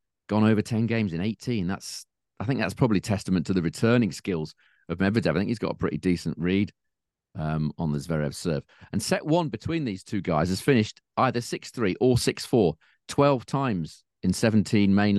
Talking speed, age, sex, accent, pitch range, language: 195 wpm, 40-59, male, British, 90-115 Hz, English